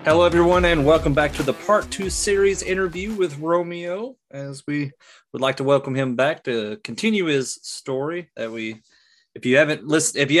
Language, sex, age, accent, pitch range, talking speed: English, male, 20-39, American, 105-140 Hz, 190 wpm